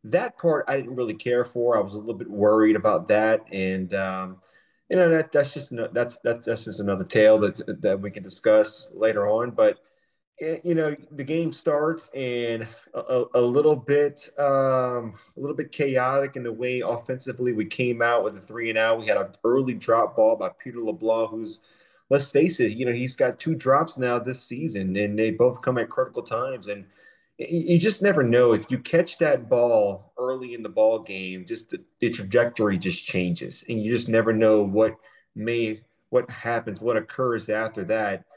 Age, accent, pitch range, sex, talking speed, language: 30-49, American, 110-140 Hz, male, 200 wpm, English